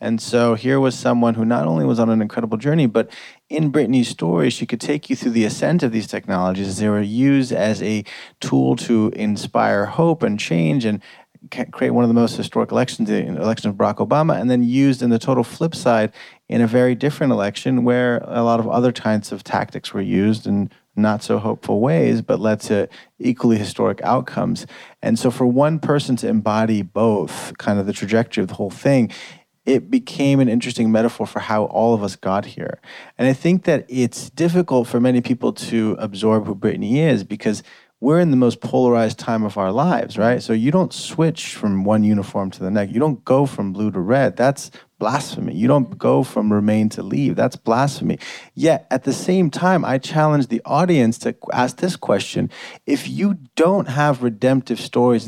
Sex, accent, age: male, American, 30-49